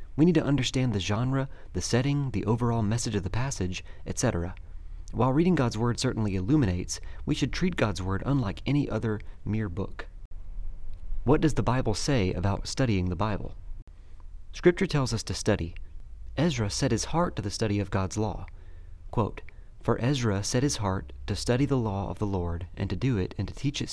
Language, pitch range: English, 90-120 Hz